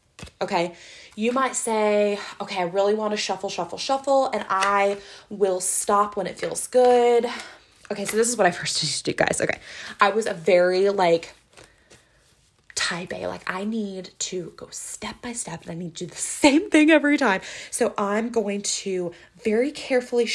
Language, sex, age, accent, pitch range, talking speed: English, female, 20-39, American, 180-235 Hz, 185 wpm